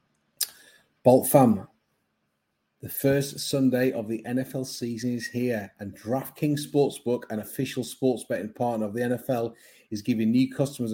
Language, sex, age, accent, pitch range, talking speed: English, male, 30-49, British, 115-135 Hz, 145 wpm